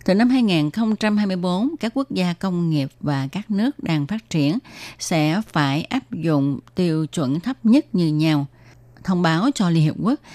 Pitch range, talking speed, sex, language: 145-210 Hz, 175 wpm, female, Vietnamese